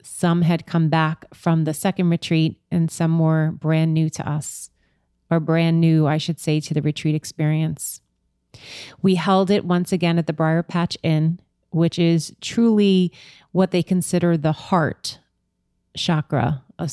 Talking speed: 160 wpm